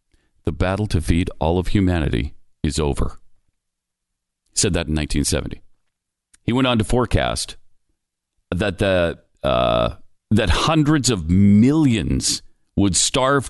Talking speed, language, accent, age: 120 wpm, English, American, 40-59